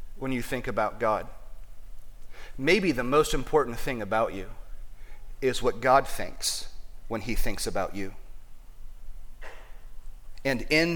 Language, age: English, 40-59